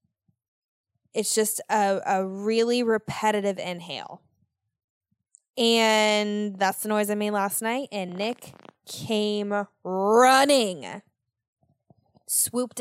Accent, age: American, 10-29